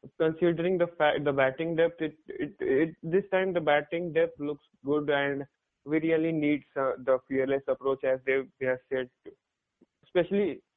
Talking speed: 165 wpm